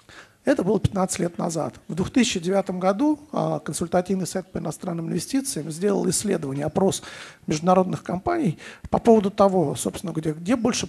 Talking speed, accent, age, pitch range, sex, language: 140 wpm, native, 50-69, 165-195 Hz, male, Russian